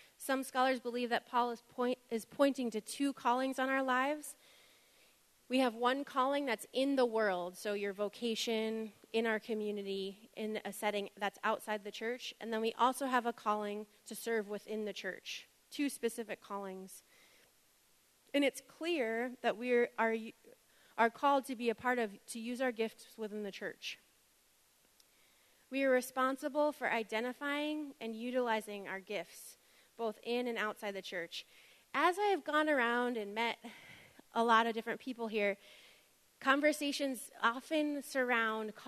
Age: 30-49